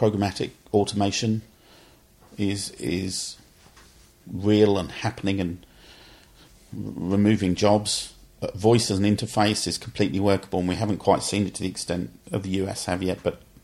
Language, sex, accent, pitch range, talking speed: English, male, British, 95-105 Hz, 150 wpm